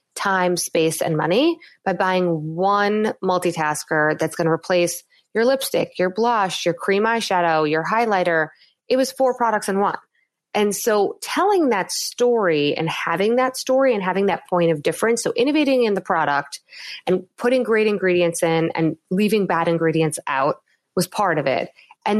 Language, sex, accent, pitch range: English, female, American, 175-265 Hz